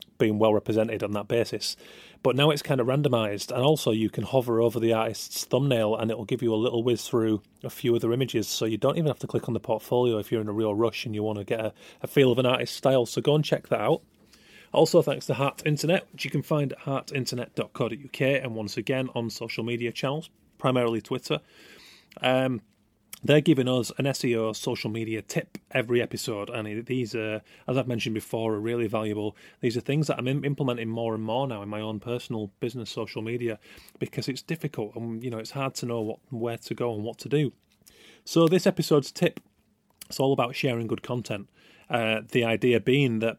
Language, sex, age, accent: English, male, 30-49, British